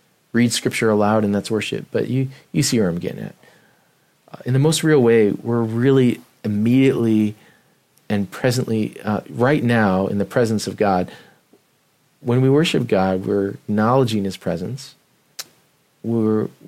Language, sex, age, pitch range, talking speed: English, male, 40-59, 100-125 Hz, 150 wpm